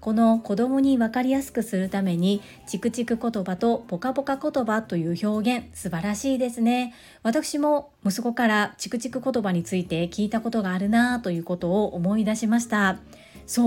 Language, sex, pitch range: Japanese, female, 185-240 Hz